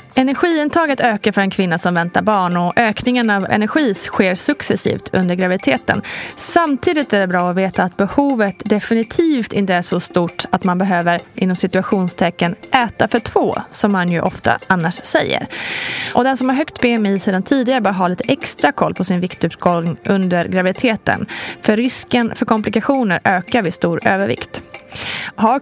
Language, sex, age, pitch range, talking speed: Swedish, female, 20-39, 185-250 Hz, 165 wpm